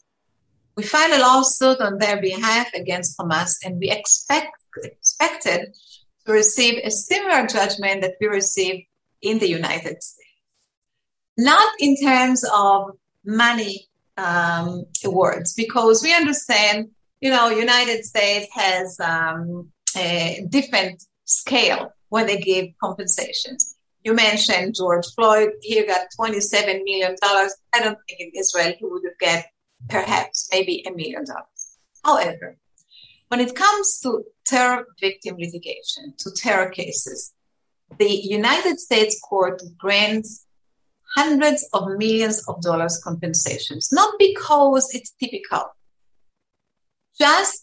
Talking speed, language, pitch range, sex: 120 wpm, English, 185-260 Hz, female